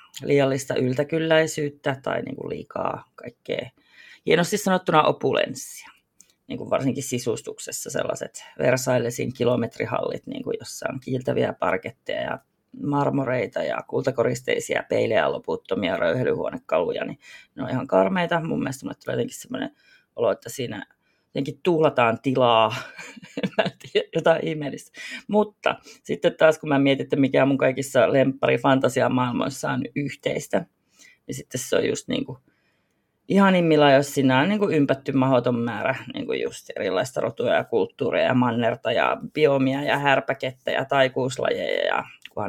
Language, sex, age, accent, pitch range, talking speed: Finnish, female, 30-49, native, 125-205 Hz, 115 wpm